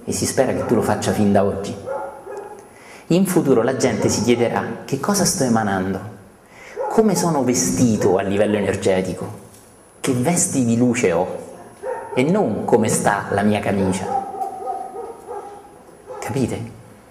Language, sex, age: Italian, male, 30-49